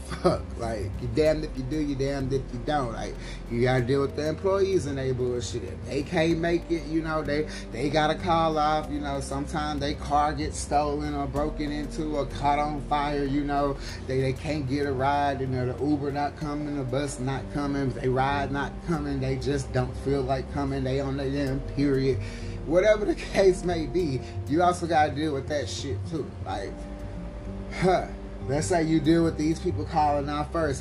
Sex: male